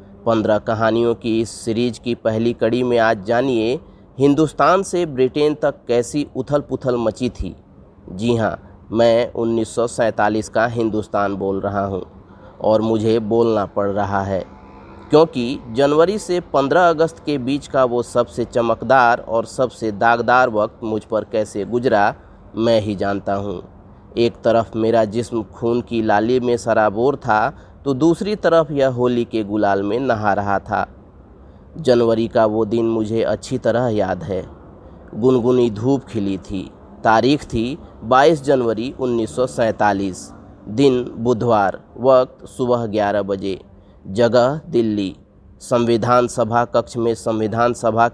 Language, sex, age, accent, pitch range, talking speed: Hindi, male, 30-49, native, 105-125 Hz, 140 wpm